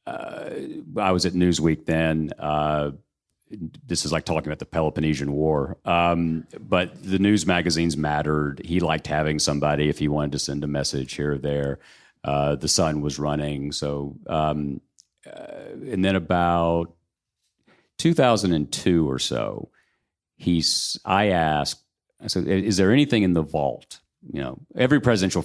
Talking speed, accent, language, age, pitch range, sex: 150 wpm, American, English, 50-69, 75-90 Hz, male